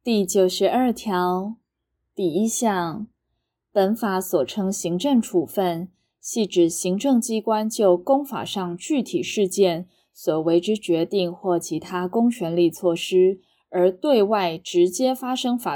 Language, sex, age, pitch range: Chinese, female, 20-39, 180-225 Hz